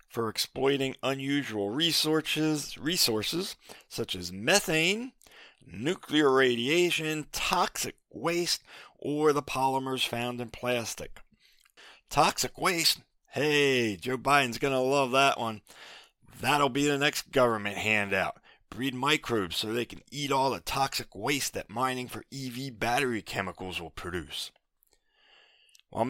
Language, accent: English, American